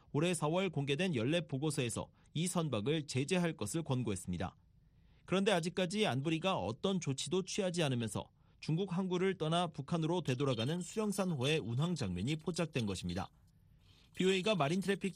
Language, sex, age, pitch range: Korean, male, 40-59, 135-185 Hz